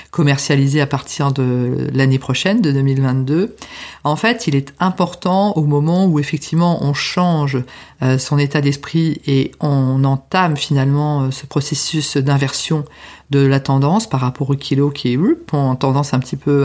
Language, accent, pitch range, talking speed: French, French, 140-180 Hz, 160 wpm